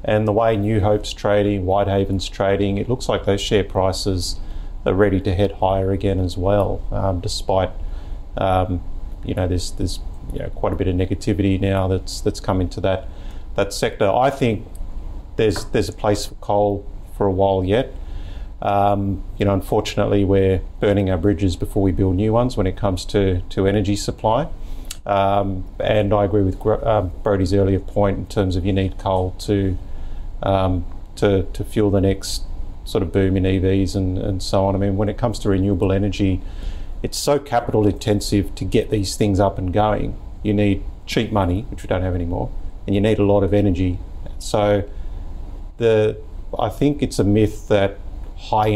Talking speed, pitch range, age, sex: 185 wpm, 90-105 Hz, 30-49, male